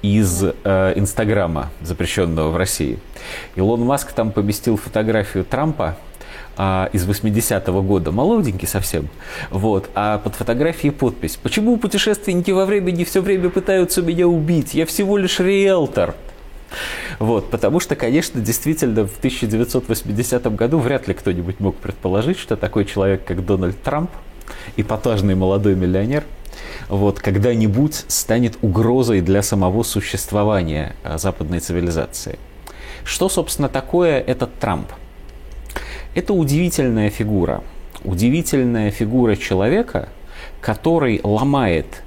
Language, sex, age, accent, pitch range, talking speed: Russian, male, 30-49, native, 95-140 Hz, 115 wpm